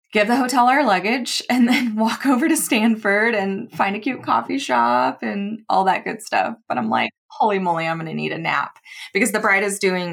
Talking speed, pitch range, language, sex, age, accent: 225 wpm, 170-245 Hz, English, female, 20-39, American